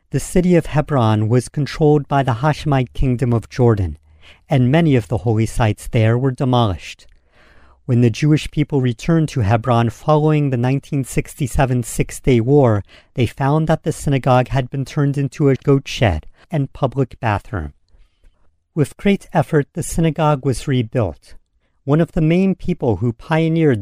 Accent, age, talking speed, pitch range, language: American, 50-69, 155 wpm, 110-150 Hz, English